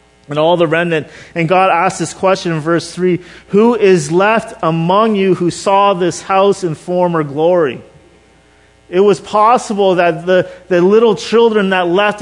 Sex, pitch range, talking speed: male, 145-200 Hz, 165 wpm